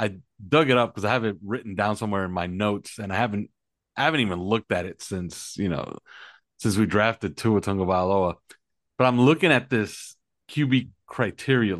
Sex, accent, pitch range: male, American, 105-135 Hz